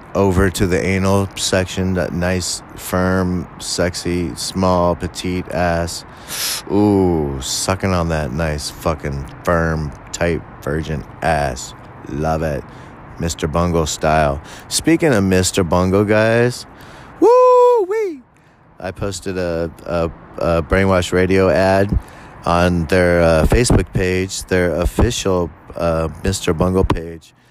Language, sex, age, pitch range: English, male, 30-49, 85-100 Hz